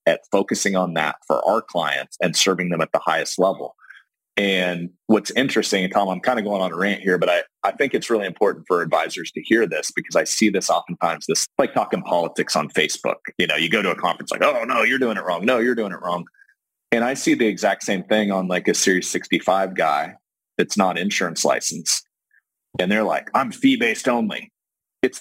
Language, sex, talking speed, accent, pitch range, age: English, male, 220 wpm, American, 105-140 Hz, 30-49